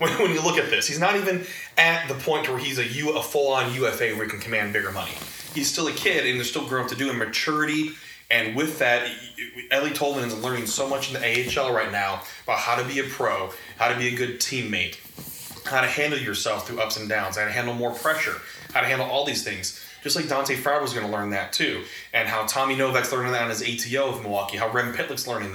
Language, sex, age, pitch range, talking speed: English, male, 20-39, 115-140 Hz, 250 wpm